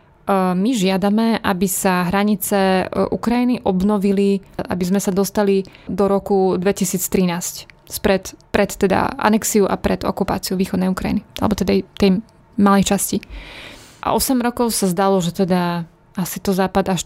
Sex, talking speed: female, 135 wpm